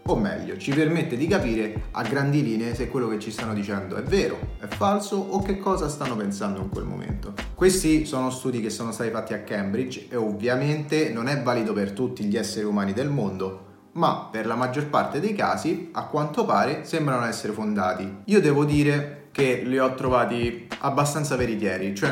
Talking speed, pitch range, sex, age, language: 195 wpm, 105-150 Hz, male, 30-49, English